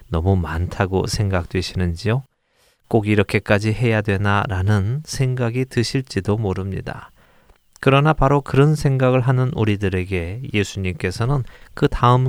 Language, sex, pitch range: Korean, male, 95-125 Hz